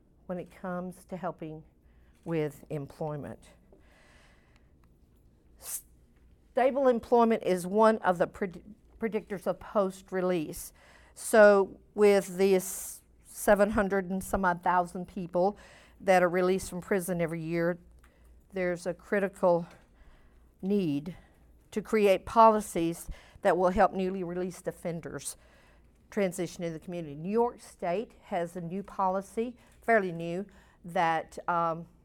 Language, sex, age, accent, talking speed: English, female, 50-69, American, 110 wpm